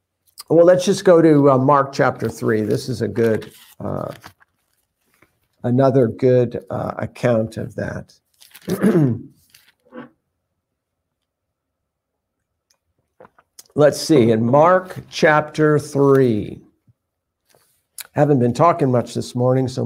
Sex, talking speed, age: male, 100 wpm, 60-79